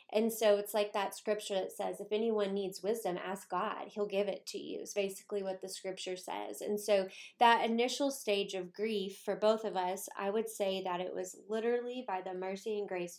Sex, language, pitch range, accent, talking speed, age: female, English, 185-210 Hz, American, 220 wpm, 20-39